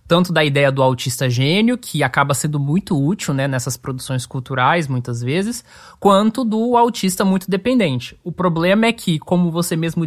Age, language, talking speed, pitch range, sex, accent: 20-39, Portuguese, 175 wpm, 155-200 Hz, male, Brazilian